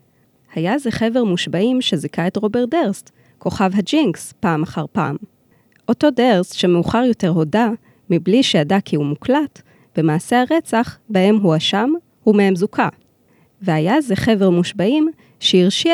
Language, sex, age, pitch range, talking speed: Hebrew, female, 20-39, 170-235 Hz, 130 wpm